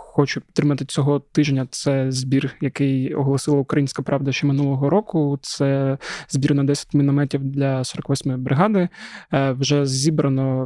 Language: Ukrainian